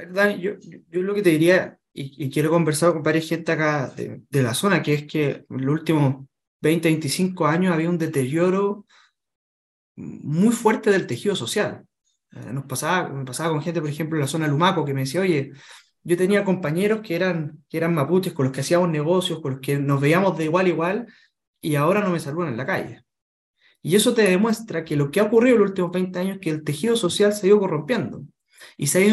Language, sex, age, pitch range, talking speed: Spanish, male, 20-39, 150-200 Hz, 225 wpm